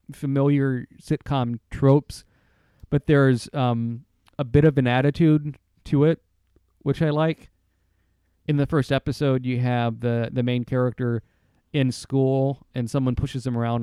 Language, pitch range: English, 110-145 Hz